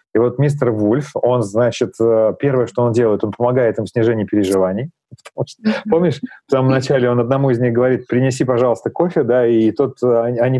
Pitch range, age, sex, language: 120-145 Hz, 30-49, male, Russian